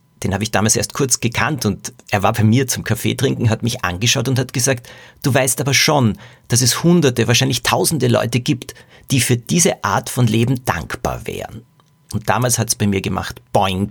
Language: German